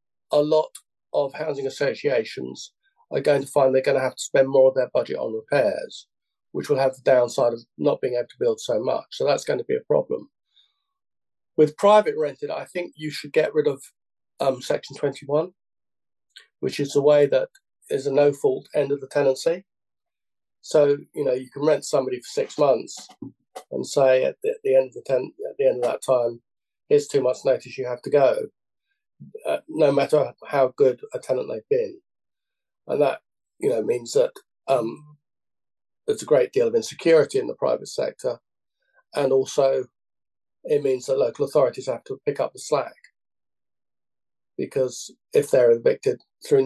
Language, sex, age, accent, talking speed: English, male, 40-59, British, 185 wpm